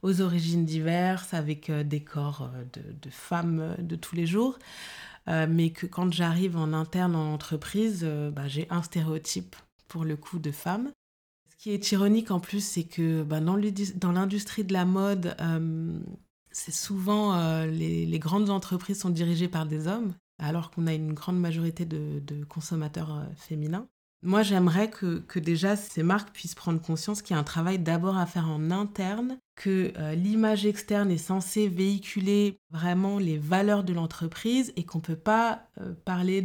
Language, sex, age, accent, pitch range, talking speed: French, female, 20-39, French, 165-200 Hz, 180 wpm